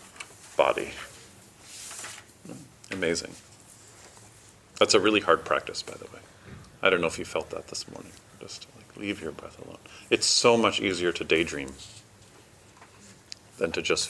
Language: English